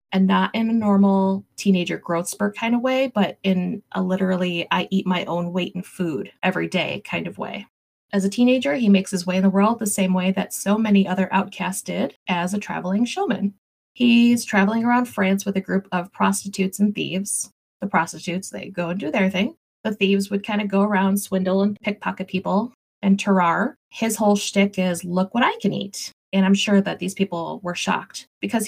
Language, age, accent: English, 20-39, American